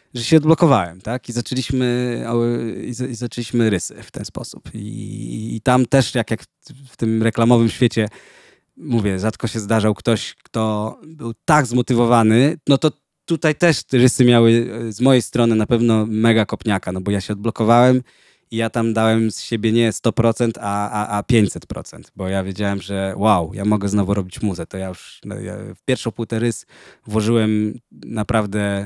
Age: 20-39